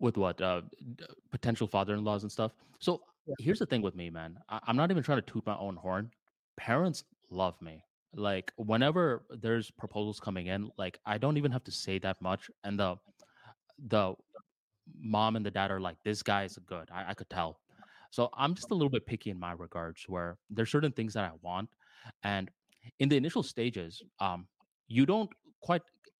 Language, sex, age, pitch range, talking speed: English, male, 20-39, 95-125 Hz, 200 wpm